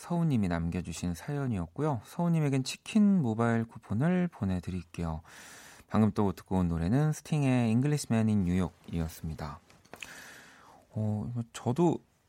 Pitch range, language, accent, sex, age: 90-125 Hz, Korean, native, male, 40-59